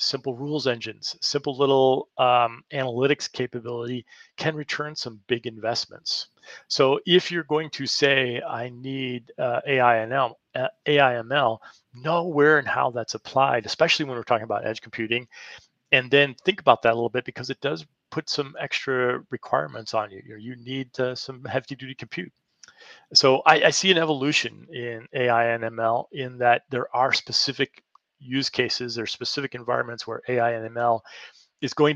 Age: 40-59